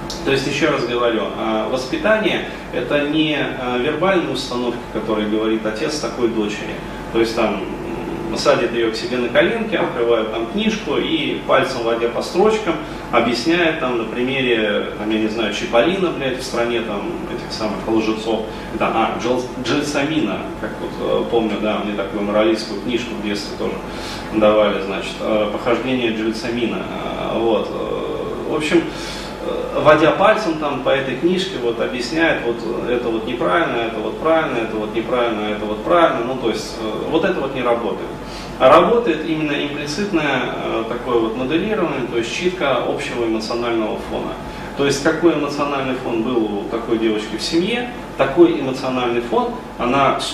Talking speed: 150 wpm